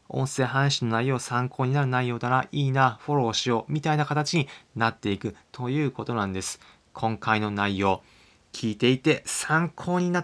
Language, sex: Japanese, male